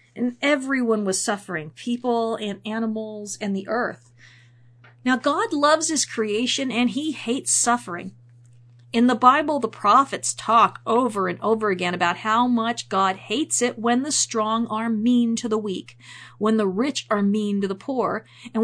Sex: female